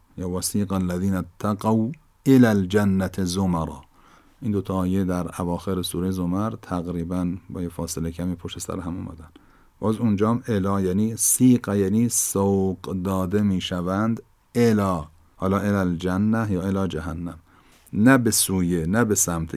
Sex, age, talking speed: male, 50-69, 135 wpm